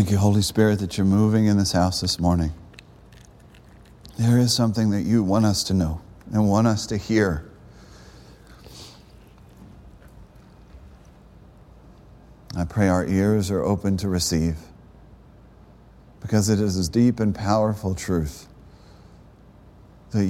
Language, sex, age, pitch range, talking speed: English, male, 50-69, 95-115 Hz, 125 wpm